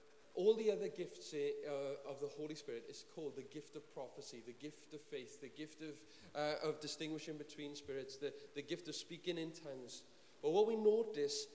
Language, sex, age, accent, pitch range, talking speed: English, male, 40-59, British, 145-195 Hz, 195 wpm